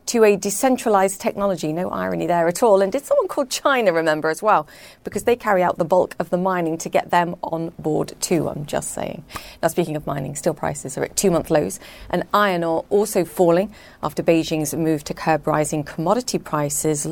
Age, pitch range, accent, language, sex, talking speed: 40-59, 155-195 Hz, British, English, female, 205 wpm